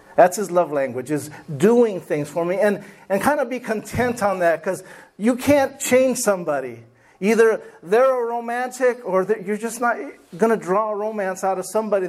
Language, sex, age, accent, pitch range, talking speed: English, male, 50-69, American, 160-220 Hz, 185 wpm